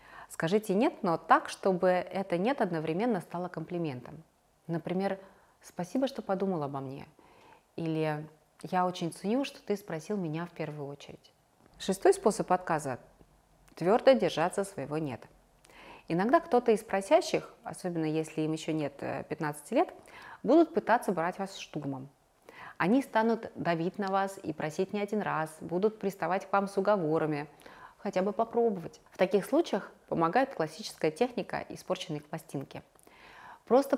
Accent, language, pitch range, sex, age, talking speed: native, Russian, 160-215 Hz, female, 30-49, 140 wpm